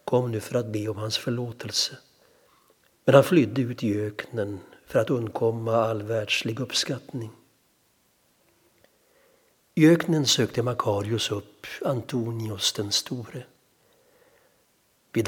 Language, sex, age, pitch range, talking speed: Swedish, male, 60-79, 110-135 Hz, 115 wpm